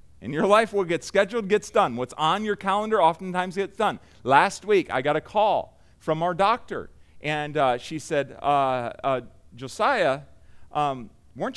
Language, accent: English, American